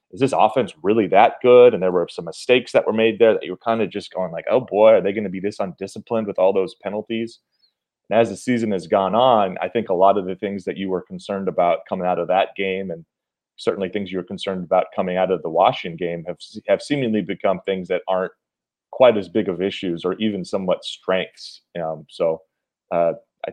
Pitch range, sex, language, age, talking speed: 85-105 Hz, male, English, 30-49, 235 wpm